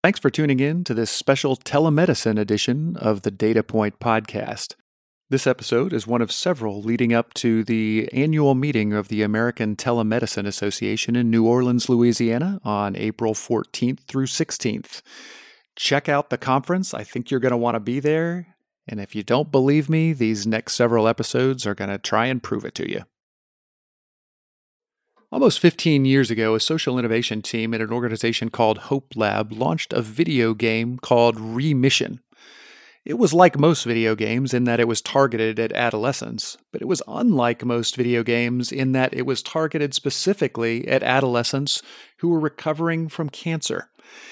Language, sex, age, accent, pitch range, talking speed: English, male, 40-59, American, 115-145 Hz, 170 wpm